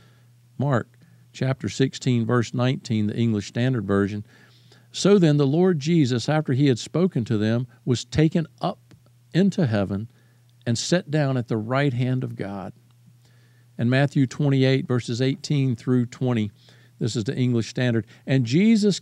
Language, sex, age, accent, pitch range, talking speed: English, male, 50-69, American, 120-160 Hz, 150 wpm